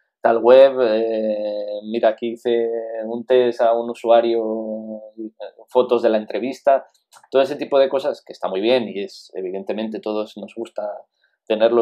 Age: 20-39